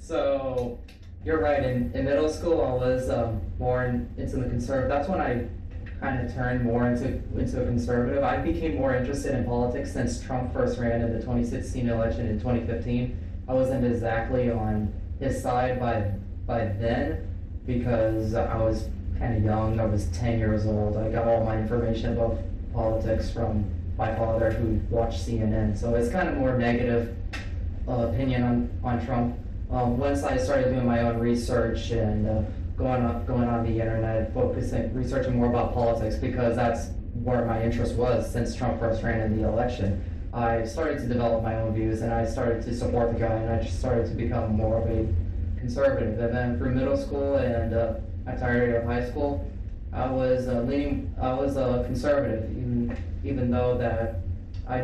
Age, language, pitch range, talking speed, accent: 20-39, English, 105-120 Hz, 180 wpm, American